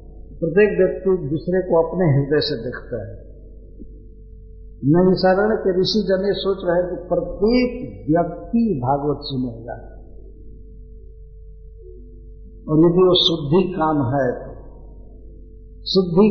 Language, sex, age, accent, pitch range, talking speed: Hindi, male, 50-69, native, 120-180 Hz, 105 wpm